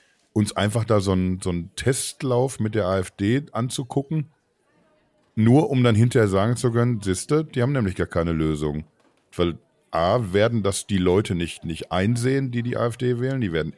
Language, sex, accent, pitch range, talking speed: German, male, German, 95-120 Hz, 175 wpm